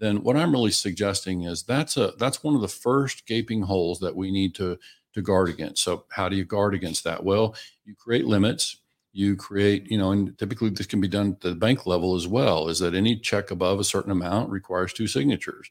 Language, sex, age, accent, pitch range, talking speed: English, male, 50-69, American, 95-115 Hz, 230 wpm